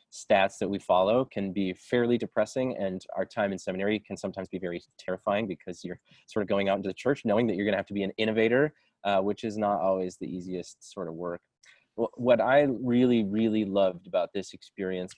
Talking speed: 220 wpm